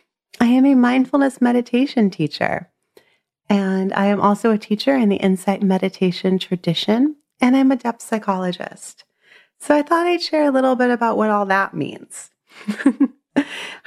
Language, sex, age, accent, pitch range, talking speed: English, female, 30-49, American, 170-245 Hz, 150 wpm